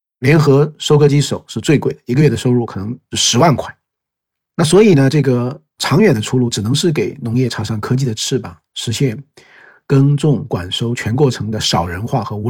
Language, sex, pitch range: Chinese, male, 115-145 Hz